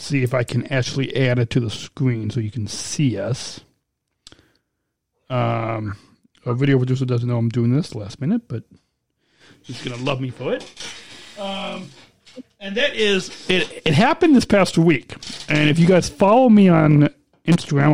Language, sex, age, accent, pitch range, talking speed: English, male, 40-59, American, 120-165 Hz, 175 wpm